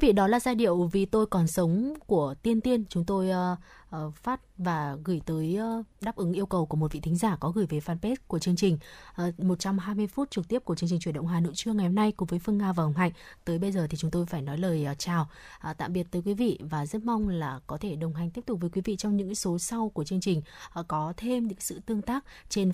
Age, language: 20-39, Vietnamese